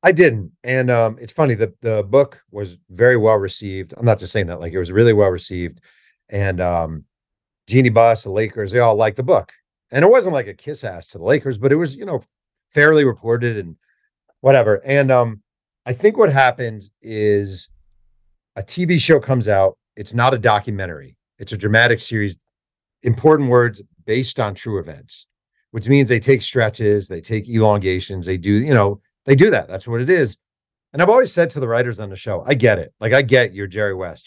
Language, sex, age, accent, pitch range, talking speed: English, male, 40-59, American, 100-130 Hz, 205 wpm